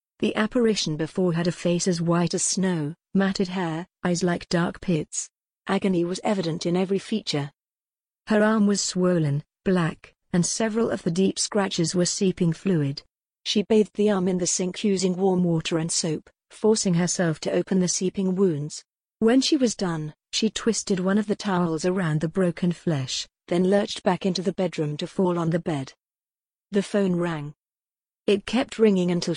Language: English